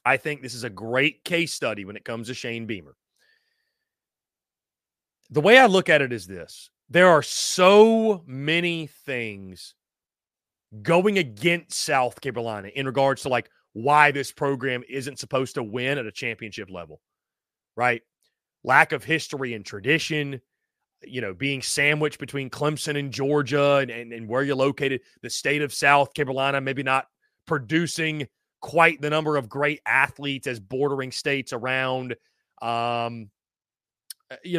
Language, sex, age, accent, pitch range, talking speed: English, male, 30-49, American, 125-165 Hz, 150 wpm